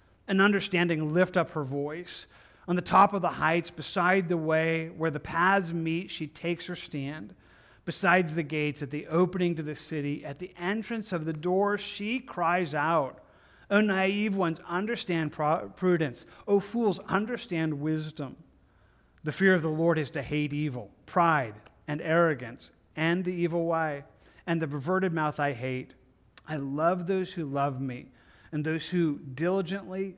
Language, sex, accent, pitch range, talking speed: English, male, American, 130-175 Hz, 165 wpm